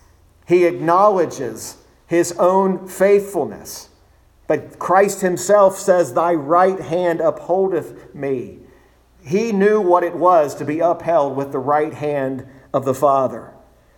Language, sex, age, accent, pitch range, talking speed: English, male, 50-69, American, 135-175 Hz, 125 wpm